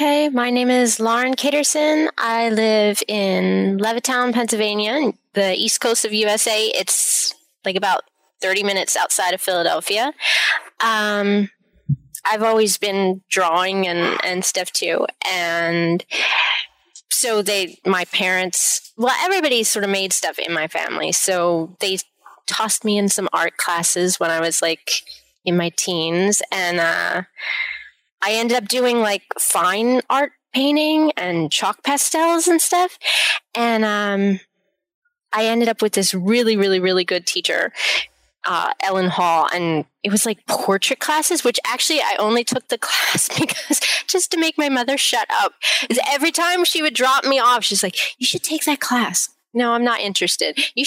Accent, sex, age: American, female, 20-39